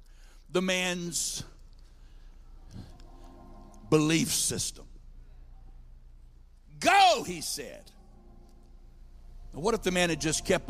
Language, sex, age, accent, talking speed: English, male, 60-79, American, 80 wpm